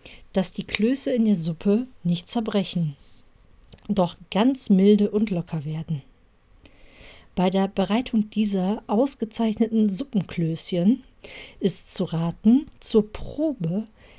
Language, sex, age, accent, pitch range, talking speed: German, female, 50-69, German, 170-225 Hz, 105 wpm